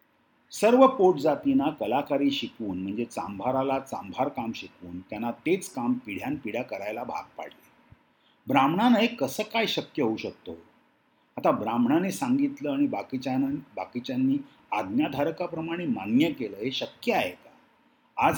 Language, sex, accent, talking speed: Marathi, male, native, 125 wpm